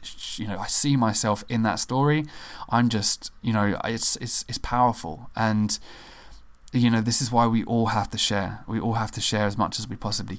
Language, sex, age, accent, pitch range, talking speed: English, male, 20-39, British, 105-115 Hz, 215 wpm